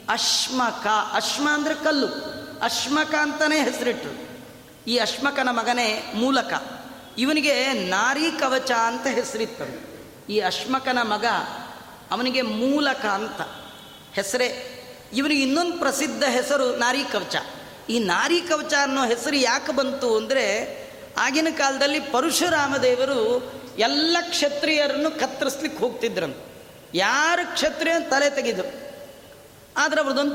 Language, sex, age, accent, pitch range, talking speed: Kannada, female, 40-59, native, 245-300 Hz, 75 wpm